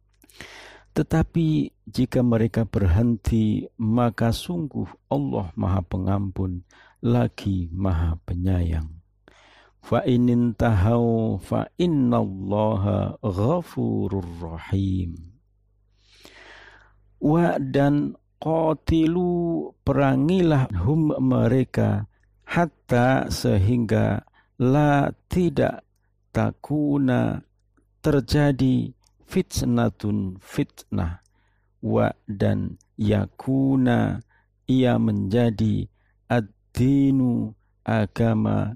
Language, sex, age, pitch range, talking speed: Indonesian, male, 50-69, 100-130 Hz, 60 wpm